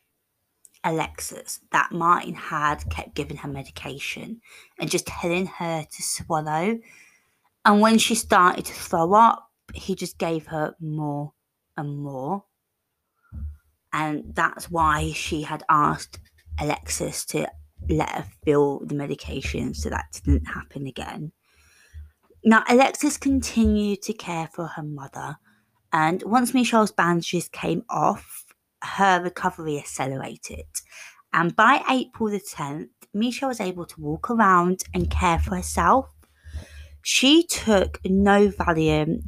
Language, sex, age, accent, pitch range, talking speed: English, female, 20-39, British, 135-205 Hz, 125 wpm